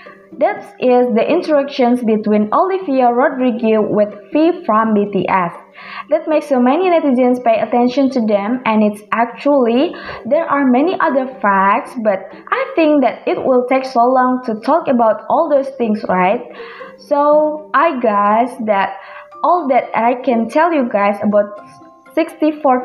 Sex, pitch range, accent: female, 220-295 Hz, Indonesian